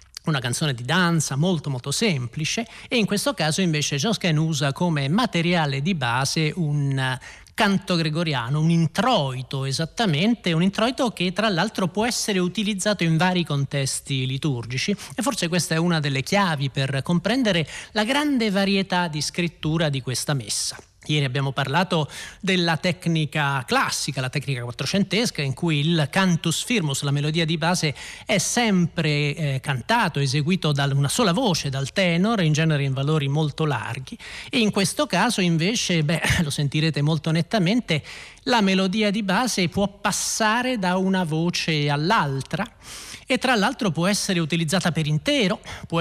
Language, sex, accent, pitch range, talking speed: Italian, male, native, 145-195 Hz, 155 wpm